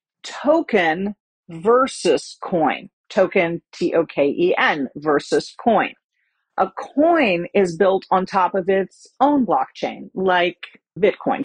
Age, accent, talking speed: 40-59, American, 100 wpm